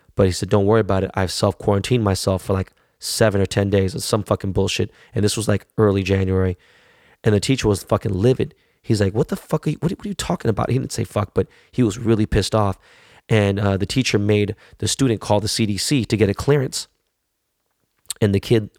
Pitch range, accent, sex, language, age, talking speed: 100-115 Hz, American, male, English, 20-39, 220 wpm